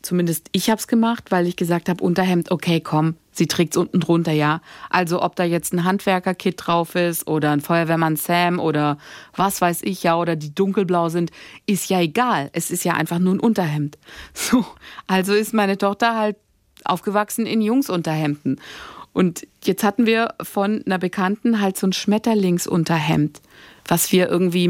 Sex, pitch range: female, 175-215 Hz